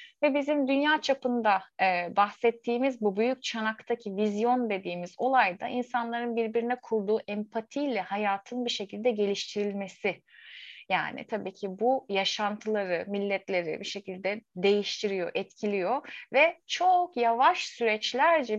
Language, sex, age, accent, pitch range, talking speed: Turkish, female, 30-49, native, 200-255 Hz, 110 wpm